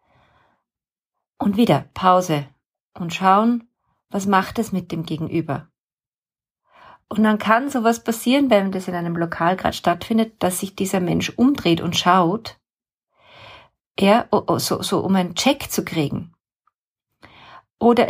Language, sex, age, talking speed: German, female, 40-59, 125 wpm